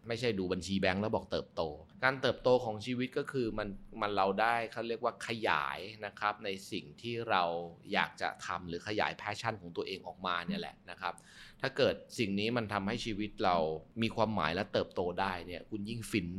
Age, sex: 20-39, male